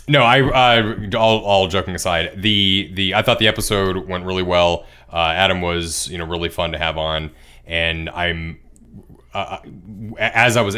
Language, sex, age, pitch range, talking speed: English, male, 30-49, 80-95 Hz, 180 wpm